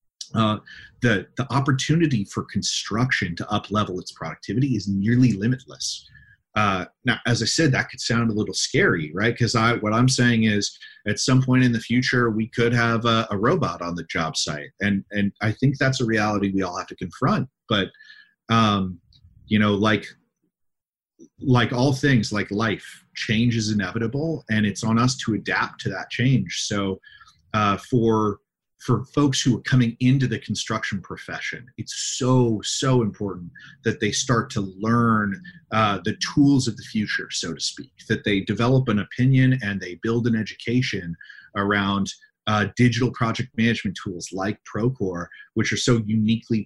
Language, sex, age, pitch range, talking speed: English, male, 30-49, 100-125 Hz, 170 wpm